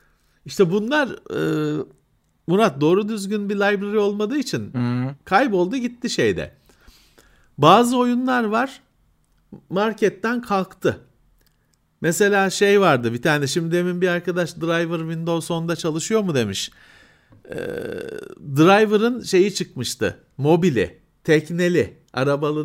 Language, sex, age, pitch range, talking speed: Turkish, male, 50-69, 140-210 Hz, 105 wpm